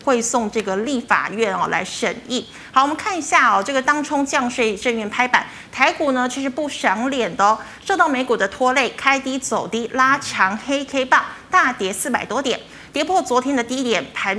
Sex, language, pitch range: female, Chinese, 215-275 Hz